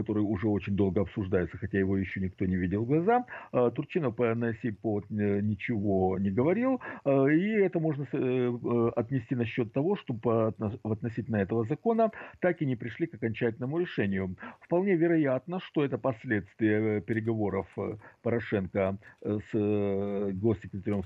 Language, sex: Russian, male